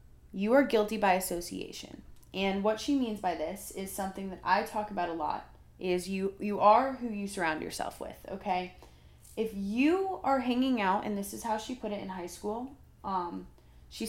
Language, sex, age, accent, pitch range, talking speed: English, female, 20-39, American, 185-230 Hz, 195 wpm